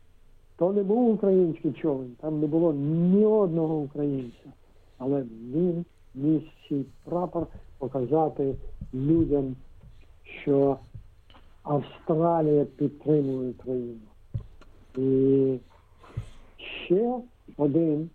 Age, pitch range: 60-79, 115-155 Hz